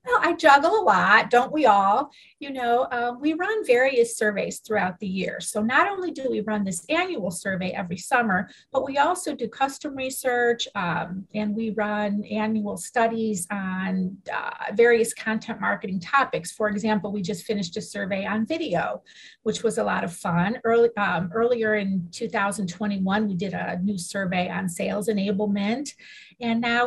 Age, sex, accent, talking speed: 30-49, female, American, 165 wpm